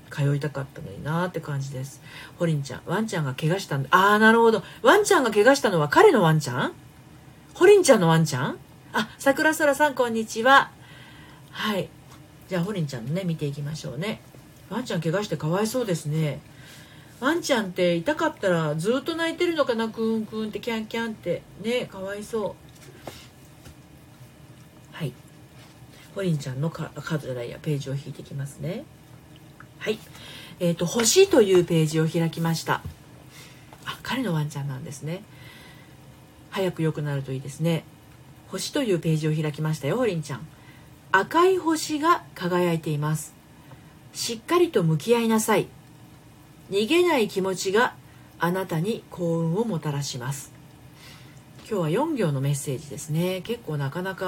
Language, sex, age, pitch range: Japanese, female, 40-59, 145-200 Hz